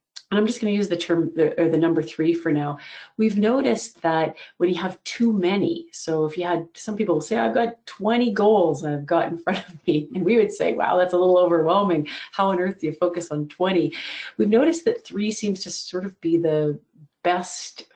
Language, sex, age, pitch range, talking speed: English, female, 40-59, 160-205 Hz, 215 wpm